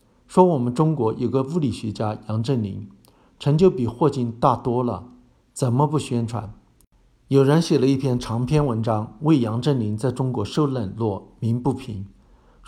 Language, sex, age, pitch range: Chinese, male, 50-69, 110-145 Hz